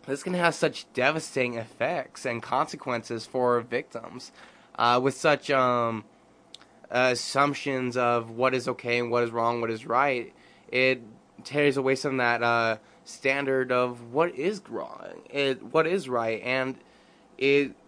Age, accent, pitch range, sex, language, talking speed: 20-39, American, 120-130 Hz, male, English, 150 wpm